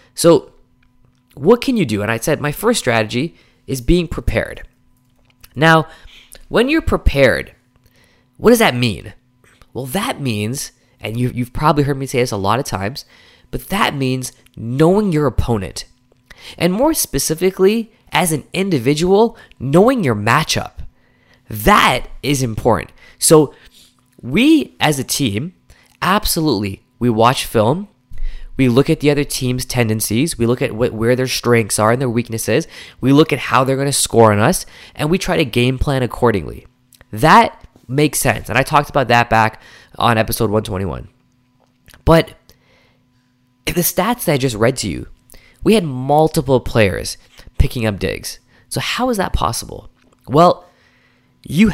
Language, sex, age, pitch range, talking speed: English, male, 20-39, 115-150 Hz, 155 wpm